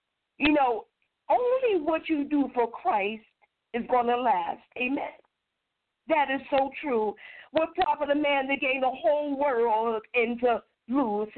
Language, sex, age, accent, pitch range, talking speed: English, female, 50-69, American, 245-320 Hz, 160 wpm